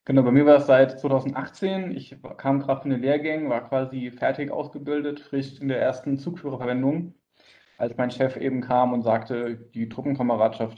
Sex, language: male, German